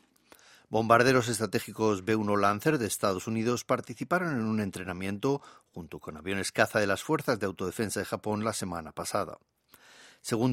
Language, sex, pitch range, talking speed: Spanish, male, 95-120 Hz, 150 wpm